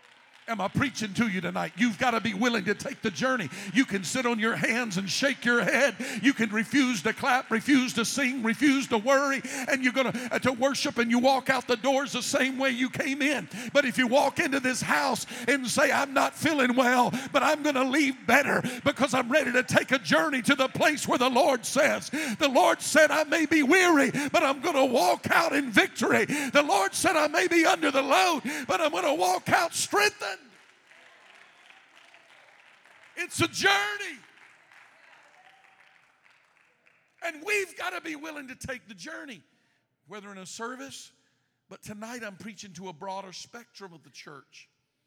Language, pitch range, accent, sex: English, 200-275 Hz, American, male